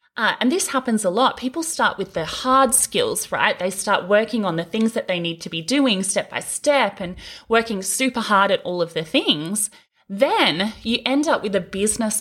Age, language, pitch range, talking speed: 30-49, English, 175-260 Hz, 215 wpm